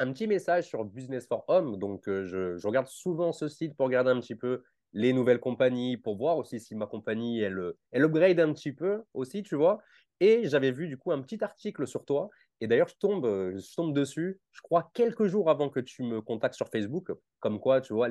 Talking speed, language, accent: 230 wpm, French, French